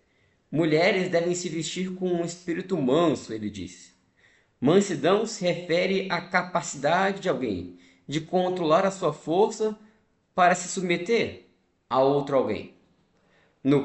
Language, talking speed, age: Portuguese, 125 wpm, 20-39